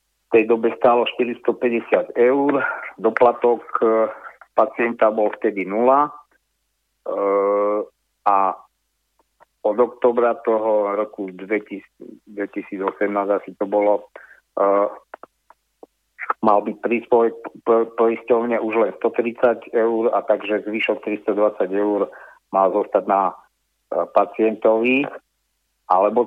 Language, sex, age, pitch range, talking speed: Slovak, male, 50-69, 105-120 Hz, 100 wpm